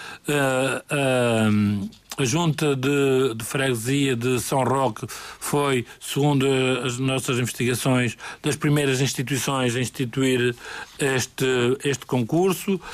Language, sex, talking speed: Portuguese, male, 105 wpm